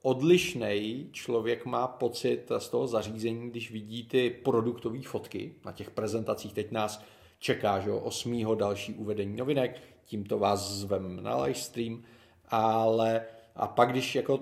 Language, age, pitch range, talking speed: Czech, 30-49, 115-140 Hz, 135 wpm